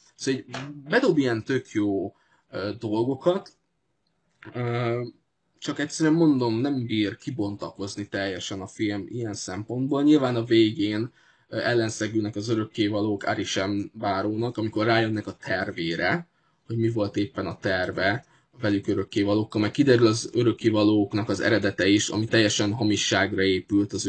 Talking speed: 130 wpm